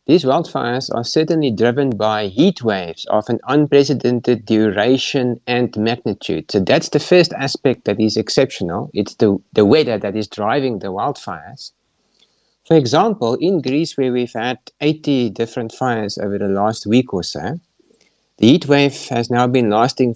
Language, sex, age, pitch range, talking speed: English, male, 50-69, 110-140 Hz, 160 wpm